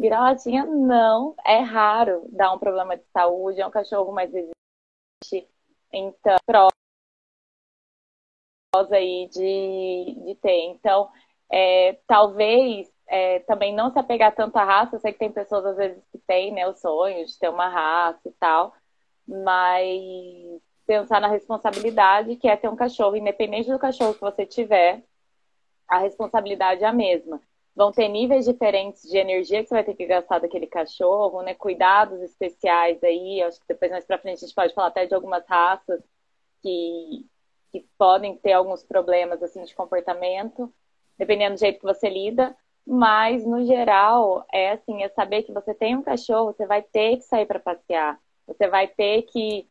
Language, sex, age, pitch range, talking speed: Portuguese, female, 20-39, 185-220 Hz, 165 wpm